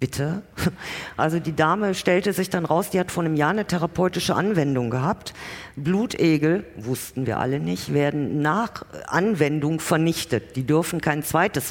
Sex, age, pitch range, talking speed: female, 50-69, 140-185 Hz, 155 wpm